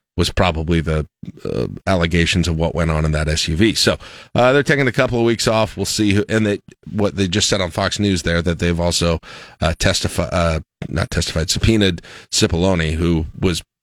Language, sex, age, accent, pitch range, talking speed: English, male, 40-59, American, 85-130 Hz, 200 wpm